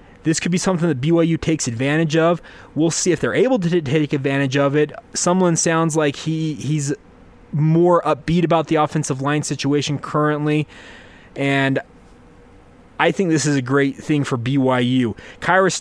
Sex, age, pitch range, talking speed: male, 20-39, 140-170 Hz, 165 wpm